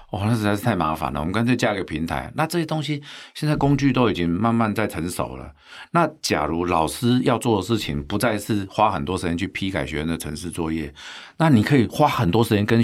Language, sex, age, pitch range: Chinese, male, 50-69, 85-120 Hz